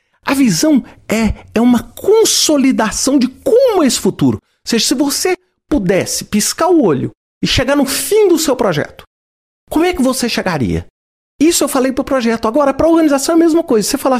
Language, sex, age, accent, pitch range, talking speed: Portuguese, male, 50-69, Brazilian, 170-280 Hz, 200 wpm